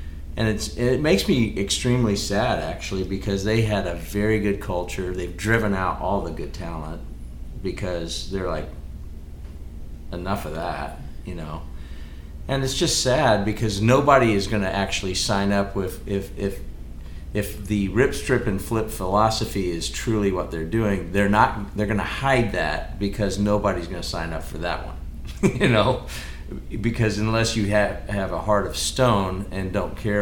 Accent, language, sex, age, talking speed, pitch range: American, English, male, 40-59, 165 wpm, 75-105 Hz